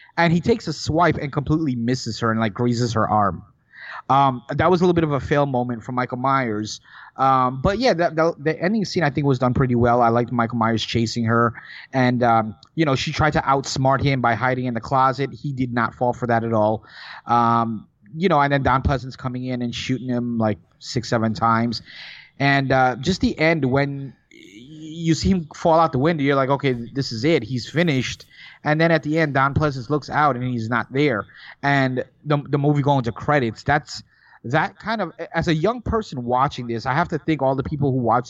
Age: 30-49